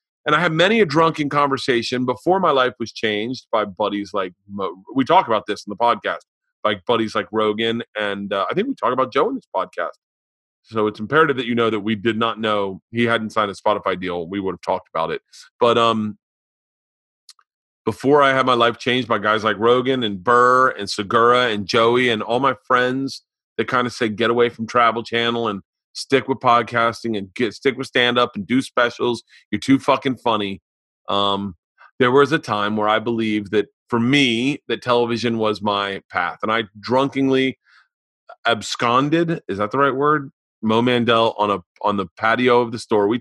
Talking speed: 205 wpm